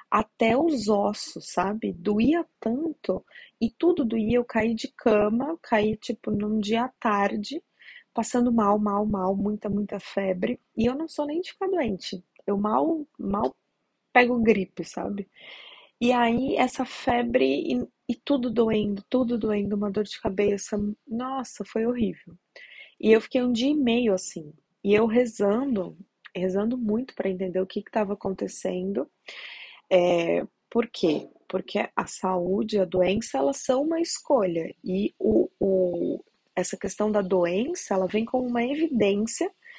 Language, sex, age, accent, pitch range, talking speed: Portuguese, female, 20-39, Brazilian, 195-250 Hz, 145 wpm